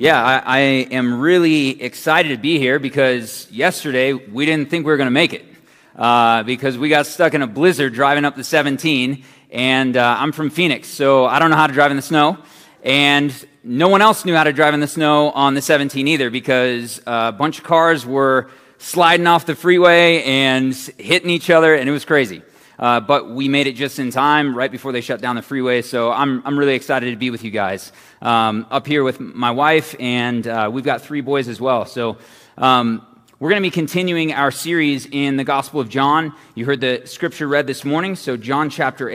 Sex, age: male, 30-49